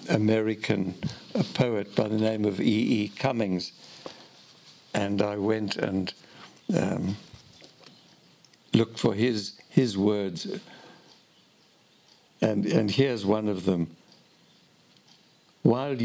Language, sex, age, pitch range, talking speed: English, male, 60-79, 100-125 Hz, 95 wpm